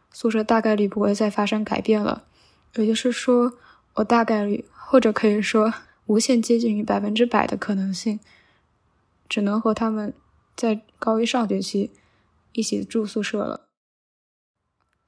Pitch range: 205-230 Hz